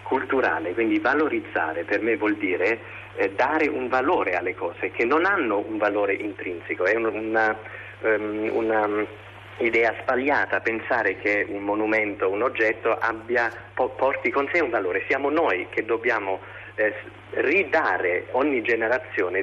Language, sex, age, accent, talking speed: Italian, male, 40-59, native, 130 wpm